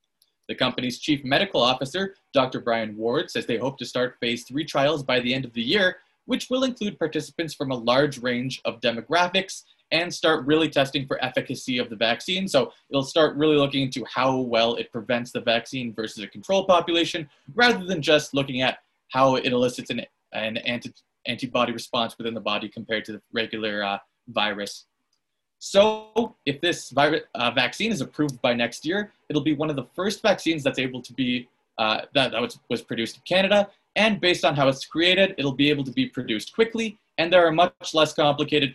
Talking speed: 195 wpm